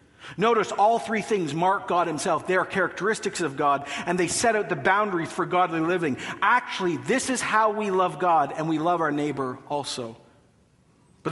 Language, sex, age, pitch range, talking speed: English, male, 50-69, 145-190 Hz, 185 wpm